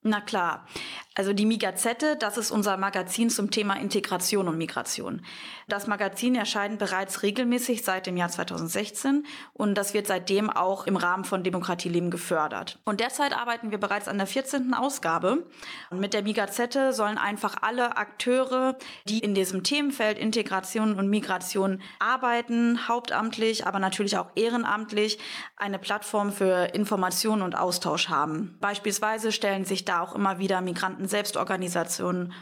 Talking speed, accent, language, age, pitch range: 145 wpm, German, German, 20-39, 190-225 Hz